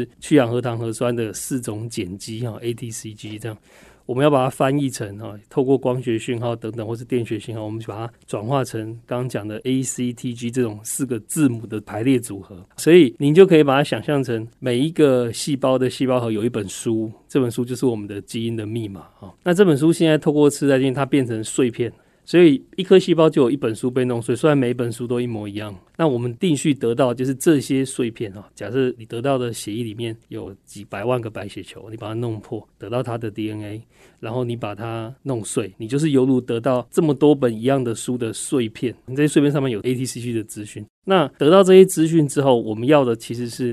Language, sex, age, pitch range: Chinese, male, 30-49, 115-140 Hz